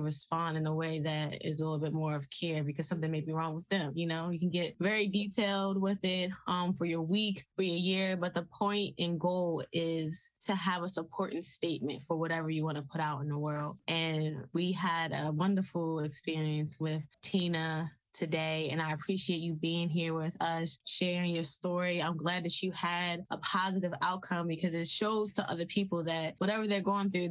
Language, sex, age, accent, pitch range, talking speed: English, female, 20-39, American, 160-185 Hz, 210 wpm